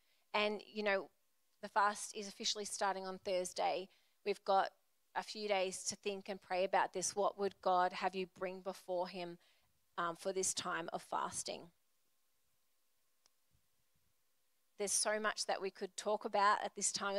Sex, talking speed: female, 160 wpm